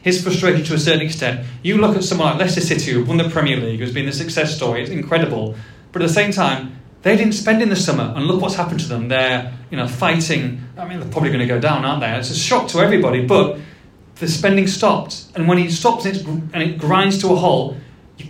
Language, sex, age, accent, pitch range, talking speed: English, male, 30-49, British, 130-180 Hz, 245 wpm